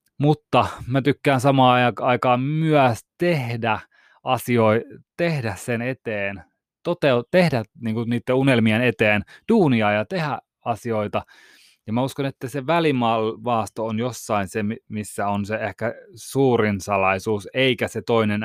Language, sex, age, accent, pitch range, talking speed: Finnish, male, 20-39, native, 115-140 Hz, 120 wpm